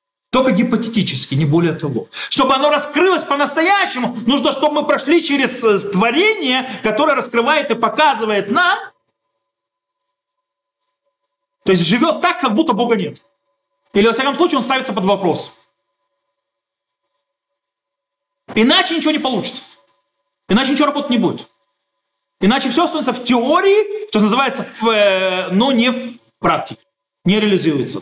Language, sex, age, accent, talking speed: Russian, male, 40-59, native, 125 wpm